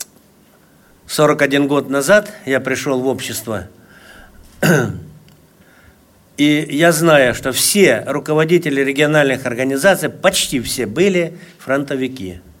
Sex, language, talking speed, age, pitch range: male, Russian, 90 wpm, 60-79, 140-165 Hz